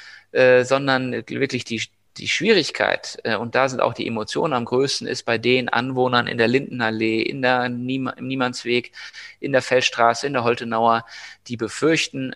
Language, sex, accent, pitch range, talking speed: German, male, German, 115-125 Hz, 155 wpm